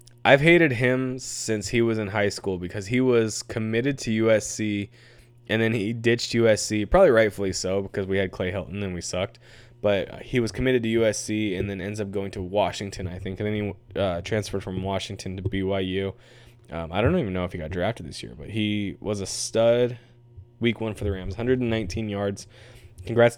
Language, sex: English, male